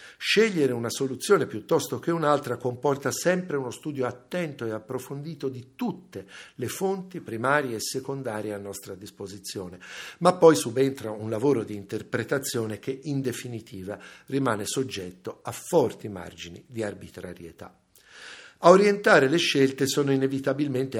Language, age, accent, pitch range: Italian, 50-69, native, 105-155 Hz